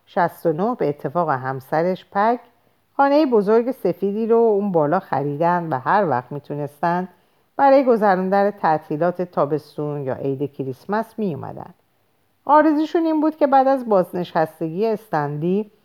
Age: 50-69